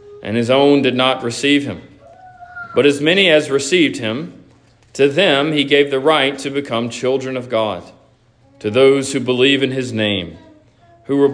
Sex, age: male, 40-59